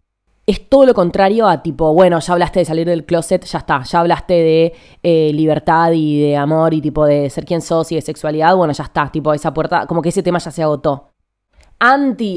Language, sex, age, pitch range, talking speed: Spanish, female, 20-39, 150-200 Hz, 225 wpm